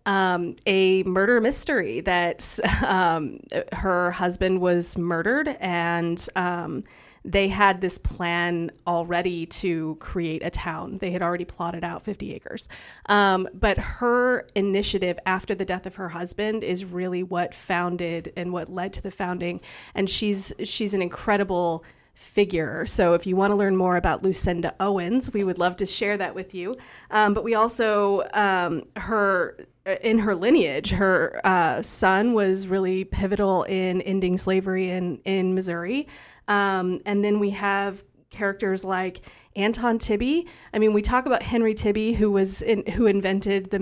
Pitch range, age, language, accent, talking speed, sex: 180-205 Hz, 30-49, English, American, 155 wpm, female